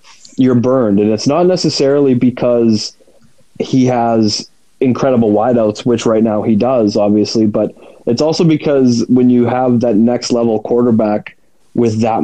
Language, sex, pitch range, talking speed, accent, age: English, male, 110-125 Hz, 145 wpm, American, 20-39